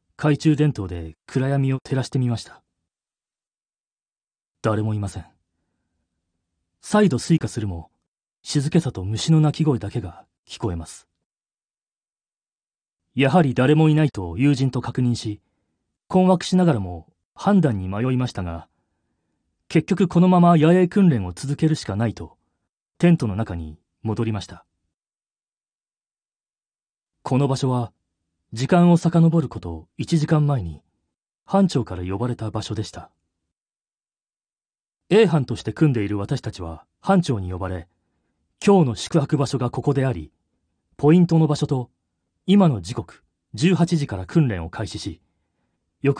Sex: male